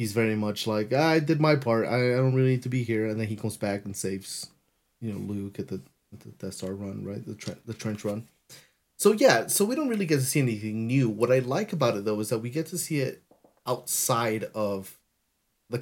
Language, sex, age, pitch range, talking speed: English, male, 30-49, 105-130 Hz, 245 wpm